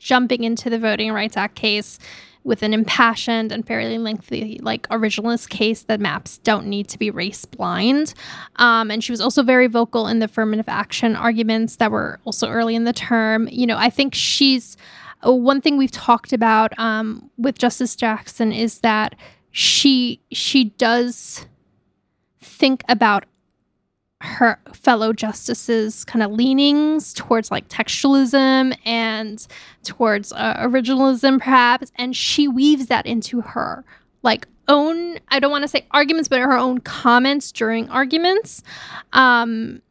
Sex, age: female, 10-29